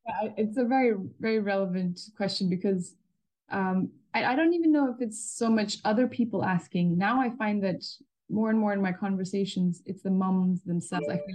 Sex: female